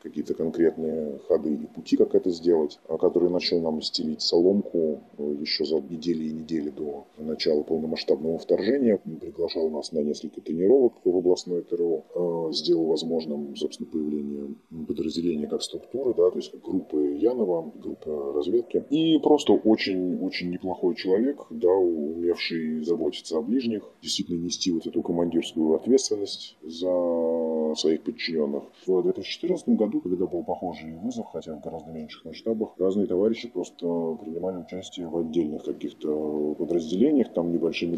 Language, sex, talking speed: Russian, male, 140 wpm